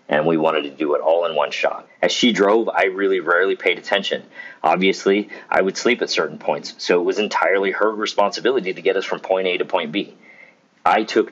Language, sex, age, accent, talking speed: English, male, 40-59, American, 225 wpm